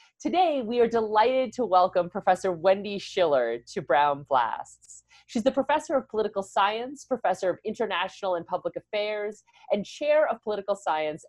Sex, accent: female, American